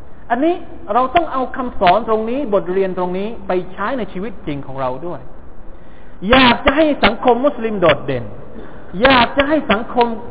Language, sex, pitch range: Thai, male, 160-245 Hz